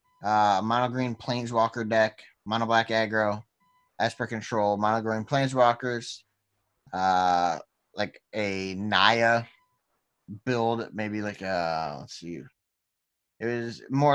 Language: English